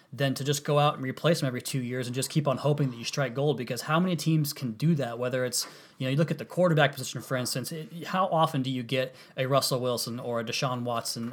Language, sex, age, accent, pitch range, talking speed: English, male, 20-39, American, 125-150 Hz, 270 wpm